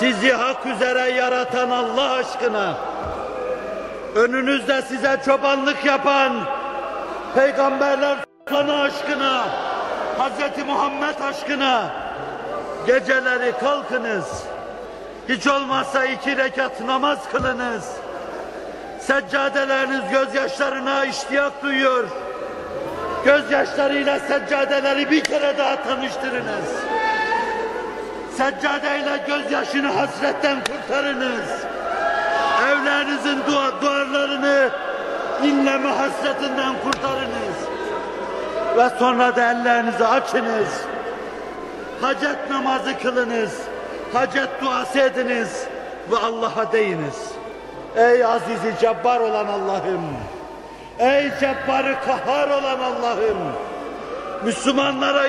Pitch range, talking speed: 255-280 Hz, 75 wpm